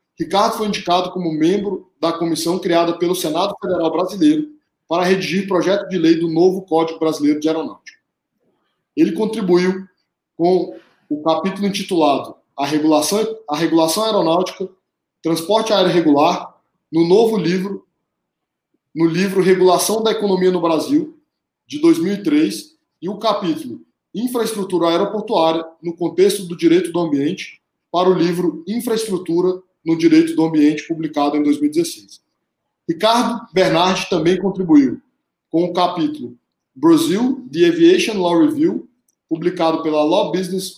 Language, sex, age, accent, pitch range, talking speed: Portuguese, male, 20-39, Brazilian, 165-215 Hz, 125 wpm